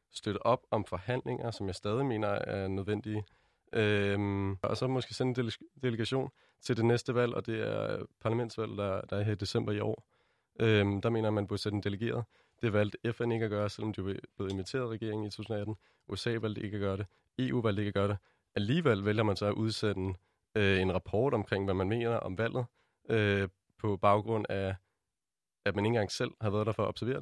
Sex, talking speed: male, 220 wpm